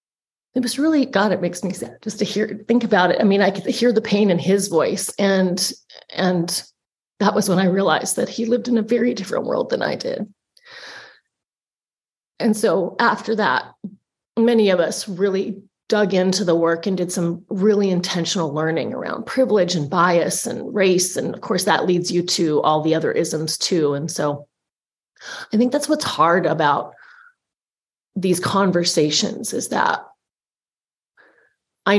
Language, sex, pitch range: English, female, 170-215 Hz